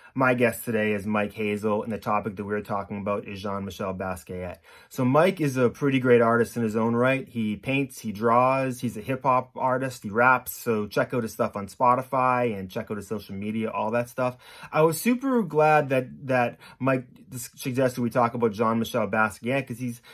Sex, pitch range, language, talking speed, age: male, 105-130 Hz, English, 205 wpm, 30-49